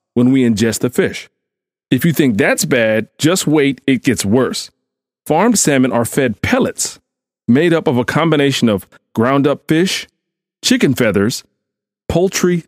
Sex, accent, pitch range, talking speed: male, American, 120-165 Hz, 145 wpm